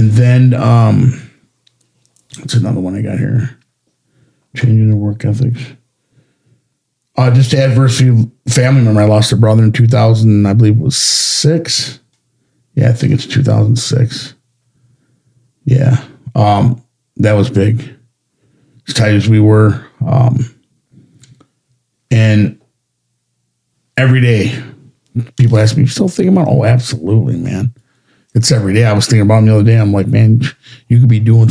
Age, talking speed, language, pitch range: 50-69, 155 wpm, English, 115-130 Hz